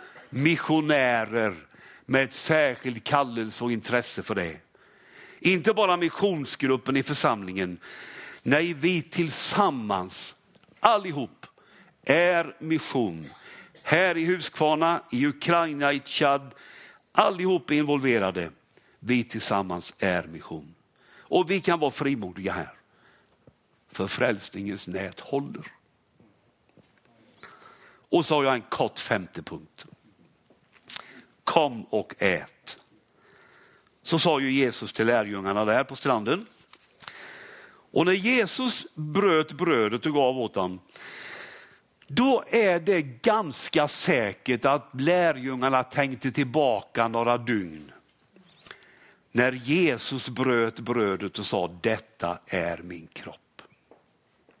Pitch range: 110-165 Hz